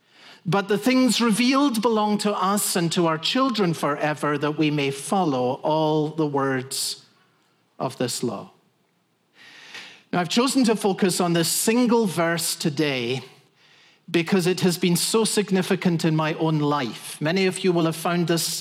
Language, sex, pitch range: English, male, 160-220 Hz